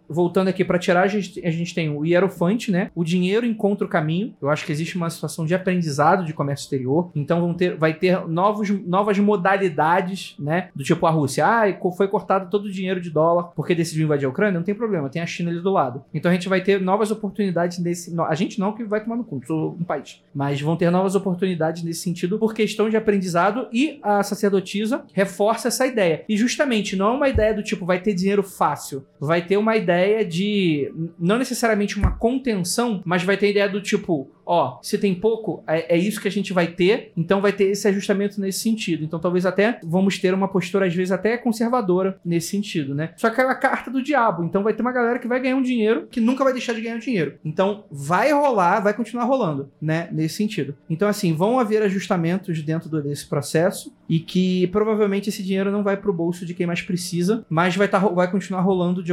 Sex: male